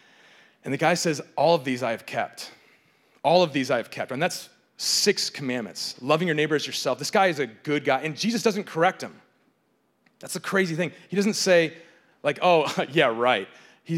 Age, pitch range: 30-49, 115-170 Hz